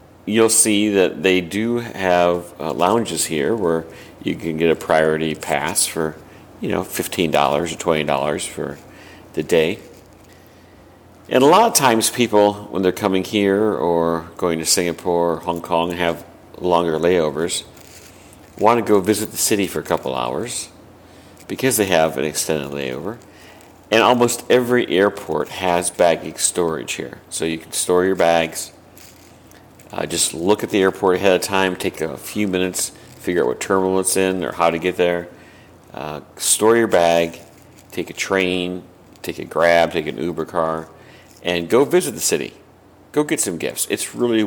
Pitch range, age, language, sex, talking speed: 85-100 Hz, 50-69, English, male, 165 wpm